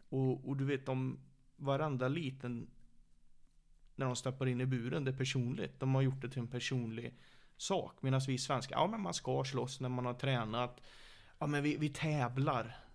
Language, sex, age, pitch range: Swedish, male, 30-49, 125-140 Hz